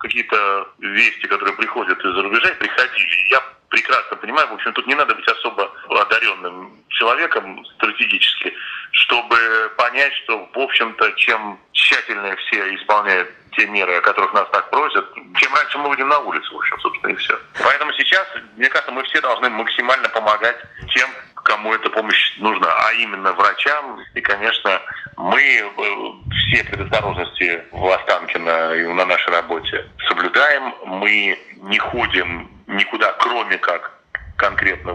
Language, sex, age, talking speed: Russian, male, 30-49, 145 wpm